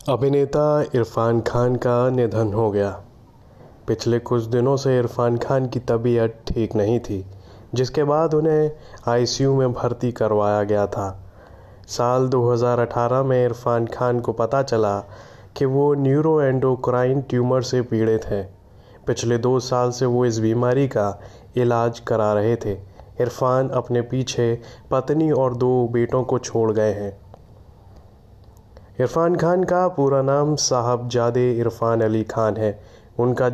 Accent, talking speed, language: native, 140 wpm, Hindi